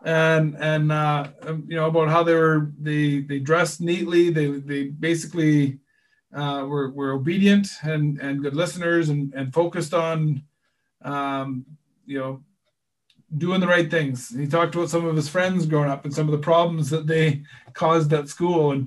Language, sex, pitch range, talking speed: English, male, 140-165 Hz, 180 wpm